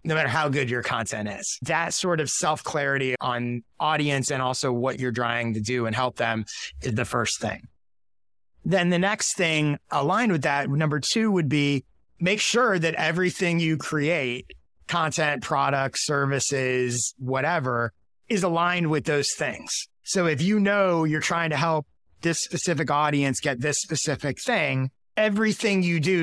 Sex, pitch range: male, 130-165 Hz